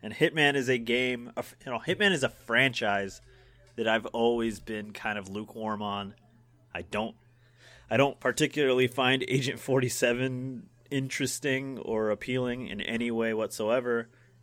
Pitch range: 105-125 Hz